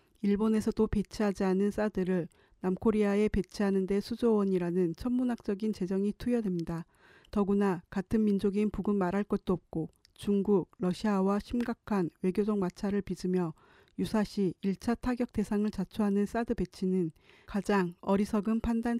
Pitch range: 190-215 Hz